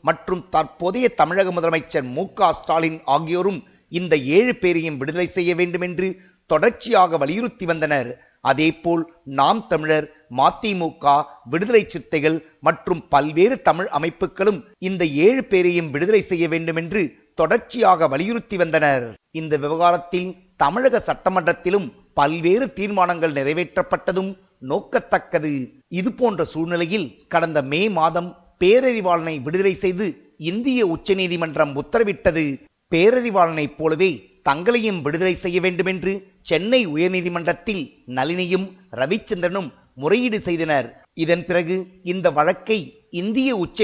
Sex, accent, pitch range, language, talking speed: male, native, 160-190 Hz, Tamil, 100 wpm